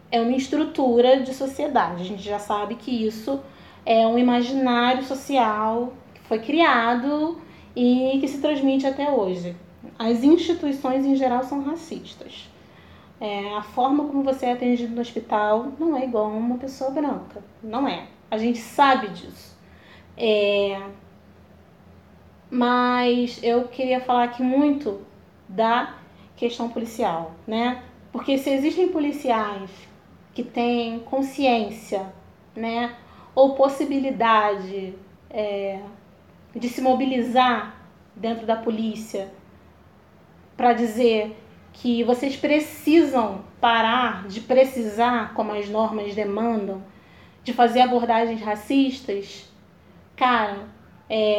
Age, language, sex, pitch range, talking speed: 20-39, Portuguese, female, 215-265 Hz, 110 wpm